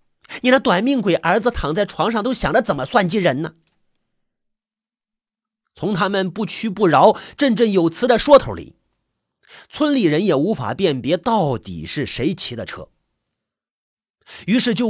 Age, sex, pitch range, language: 30-49, male, 165-240 Hz, Chinese